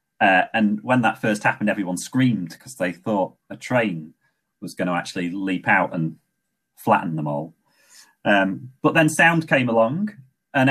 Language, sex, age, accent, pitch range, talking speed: English, male, 30-49, British, 85-130 Hz, 170 wpm